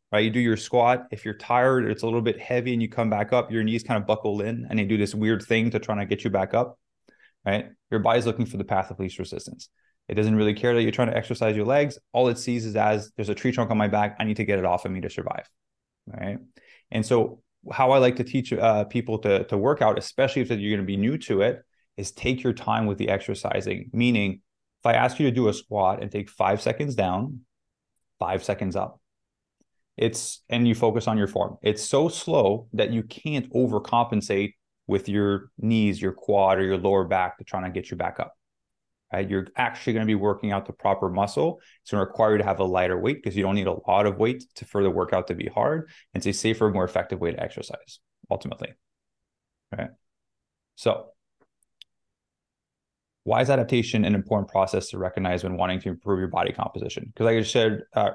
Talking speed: 235 wpm